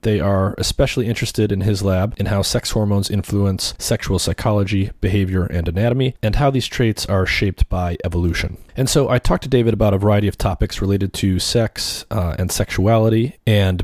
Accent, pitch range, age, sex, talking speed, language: American, 95-110 Hz, 30-49, male, 185 wpm, English